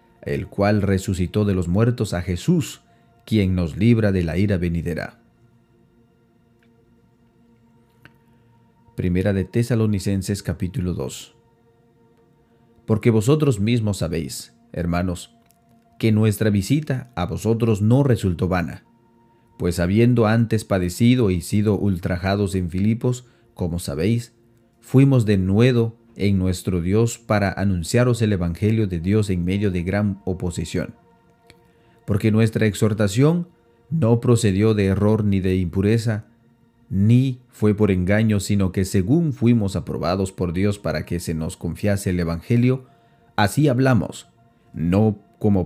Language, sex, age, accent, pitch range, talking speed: Spanish, male, 40-59, Mexican, 95-115 Hz, 120 wpm